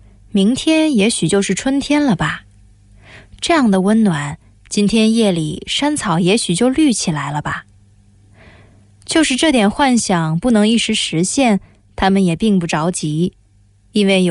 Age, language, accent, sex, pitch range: 20-39, English, Chinese, female, 145-225 Hz